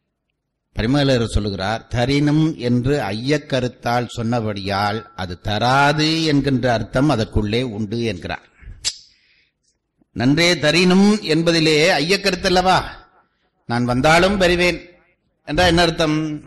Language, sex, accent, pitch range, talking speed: Tamil, male, native, 125-175 Hz, 80 wpm